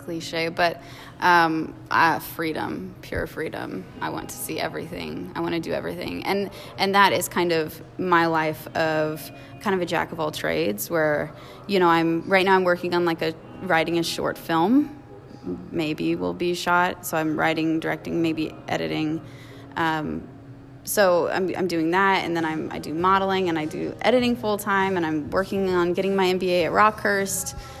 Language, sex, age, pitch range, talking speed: English, female, 20-39, 155-180 Hz, 185 wpm